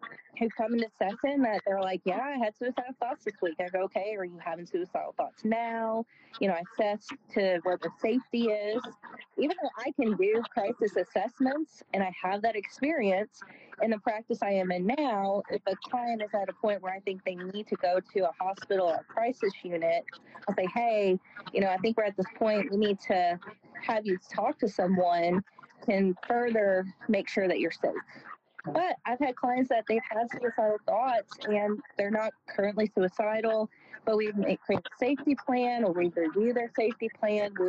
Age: 30-49